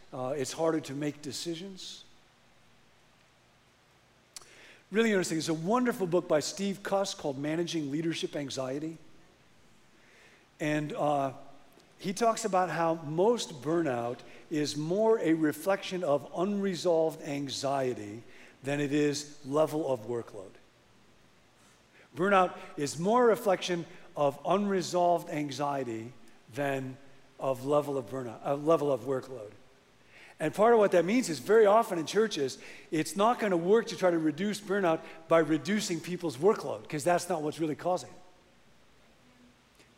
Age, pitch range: 50-69, 140-185 Hz